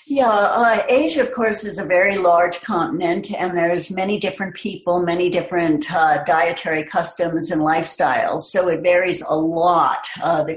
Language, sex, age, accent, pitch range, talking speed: English, female, 60-79, American, 165-200 Hz, 165 wpm